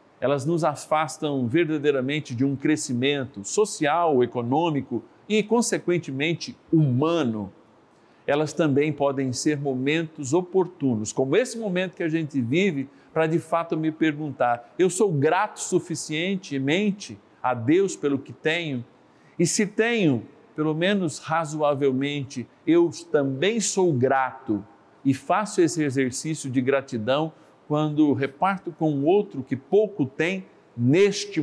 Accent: Brazilian